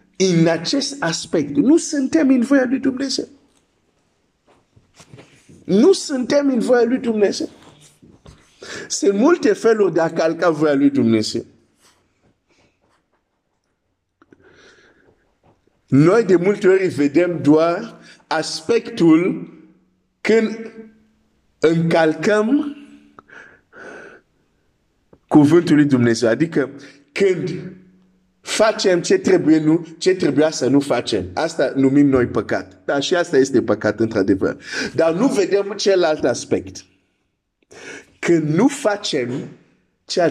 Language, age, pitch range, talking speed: Romanian, 50-69, 145-230 Hz, 85 wpm